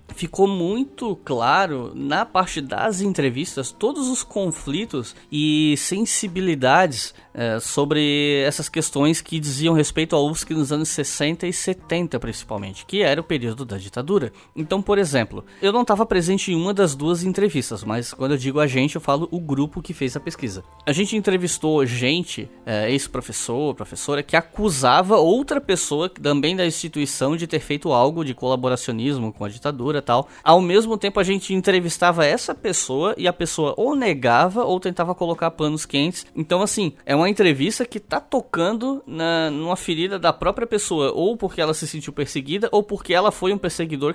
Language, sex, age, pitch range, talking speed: Portuguese, male, 10-29, 140-185 Hz, 165 wpm